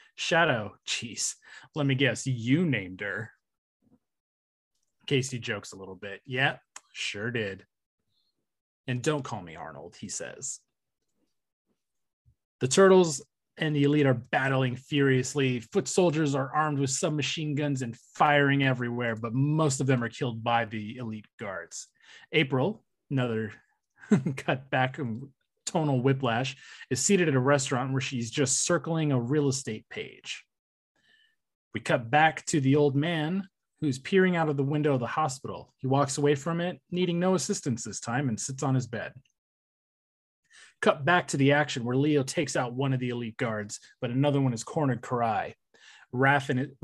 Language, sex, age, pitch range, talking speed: English, male, 30-49, 125-150 Hz, 160 wpm